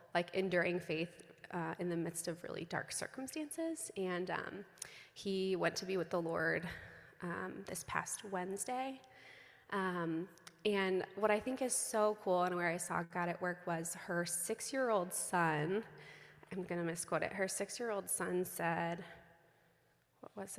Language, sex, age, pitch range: English, female, 20-39, 175-205 Hz